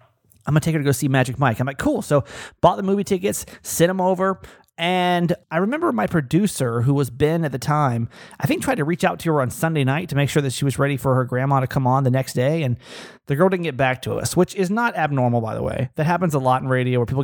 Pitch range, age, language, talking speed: 125-175 Hz, 30-49, English, 285 wpm